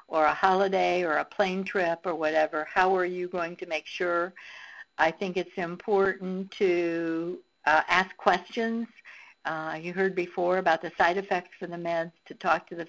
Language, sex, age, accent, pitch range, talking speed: English, female, 60-79, American, 165-190 Hz, 180 wpm